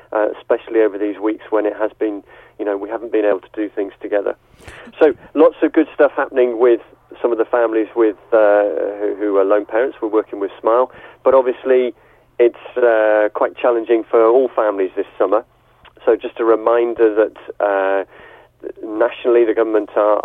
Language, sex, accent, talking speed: English, male, British, 195 wpm